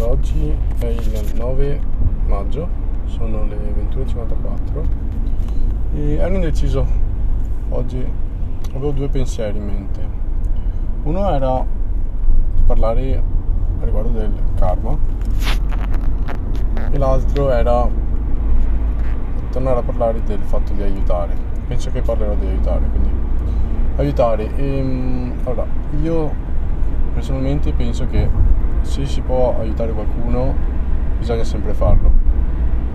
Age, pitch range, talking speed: 20-39, 75-115 Hz, 100 wpm